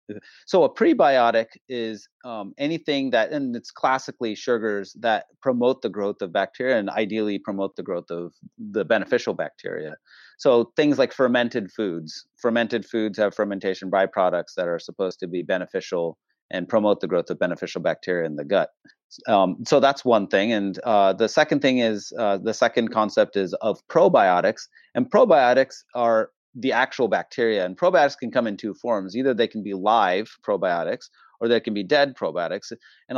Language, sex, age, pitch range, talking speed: English, male, 30-49, 105-135 Hz, 175 wpm